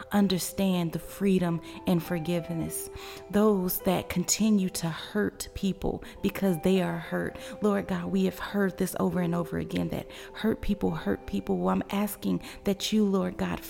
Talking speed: 160 wpm